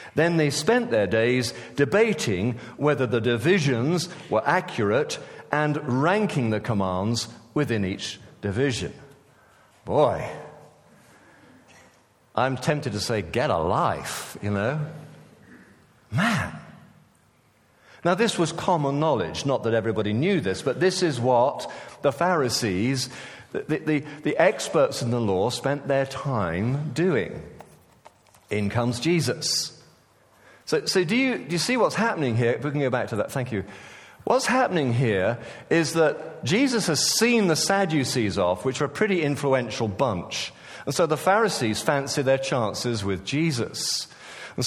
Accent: British